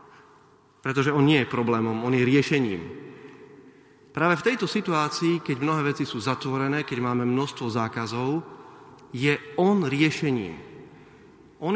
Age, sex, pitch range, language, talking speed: 40-59, male, 120-150 Hz, Slovak, 130 wpm